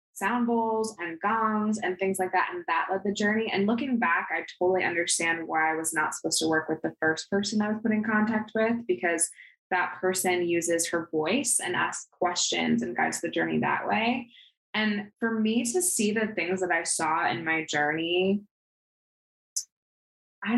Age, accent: 20-39, American